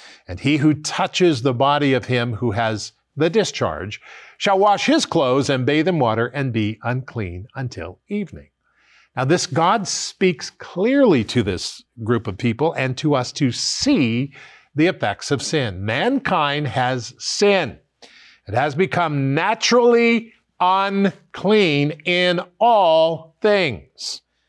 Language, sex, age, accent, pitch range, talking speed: English, male, 50-69, American, 130-185 Hz, 135 wpm